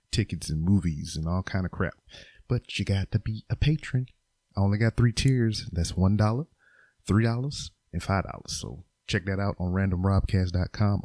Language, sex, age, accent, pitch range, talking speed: English, male, 30-49, American, 85-105 Hz, 185 wpm